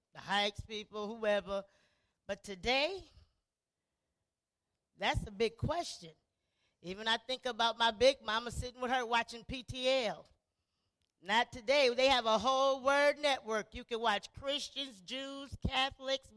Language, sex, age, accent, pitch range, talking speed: English, female, 40-59, American, 250-300 Hz, 130 wpm